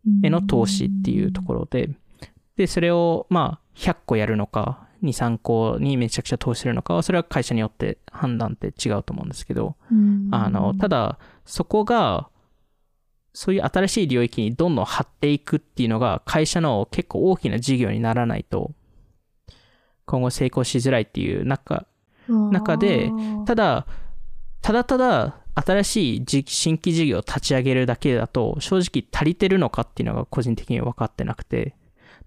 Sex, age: male, 20-39